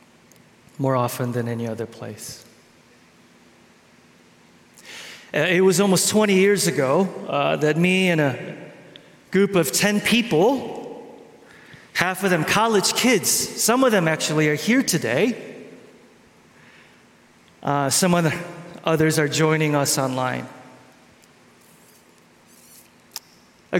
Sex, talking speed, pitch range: male, 110 wpm, 145-180 Hz